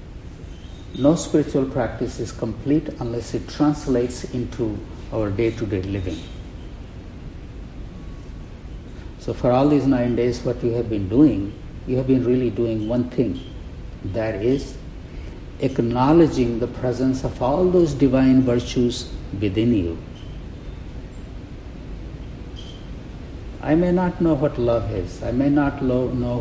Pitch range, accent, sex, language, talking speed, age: 95-135 Hz, Indian, male, English, 120 wpm, 60-79